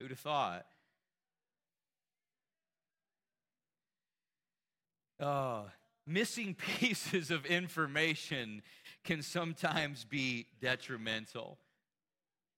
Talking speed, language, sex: 55 wpm, English, male